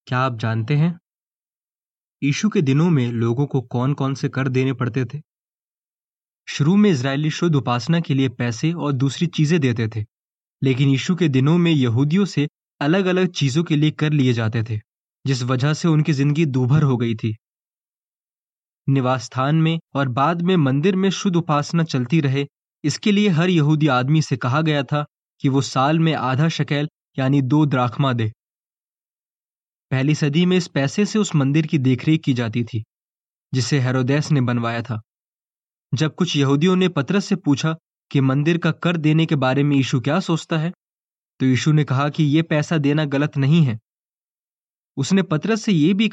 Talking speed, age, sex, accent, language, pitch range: 180 wpm, 20-39, male, native, Hindi, 130-160 Hz